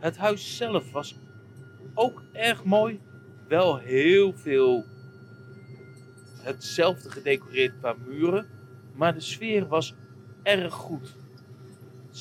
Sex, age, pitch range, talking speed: male, 40-59, 125-155 Hz, 105 wpm